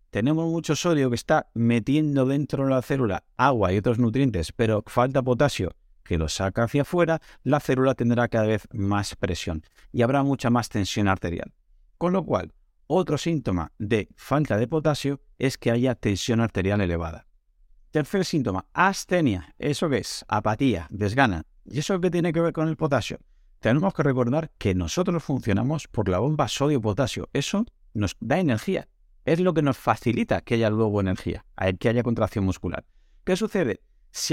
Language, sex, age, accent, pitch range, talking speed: Spanish, male, 50-69, Spanish, 100-150 Hz, 170 wpm